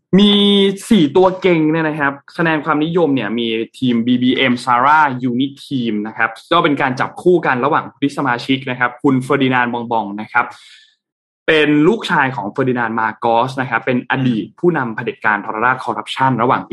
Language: Thai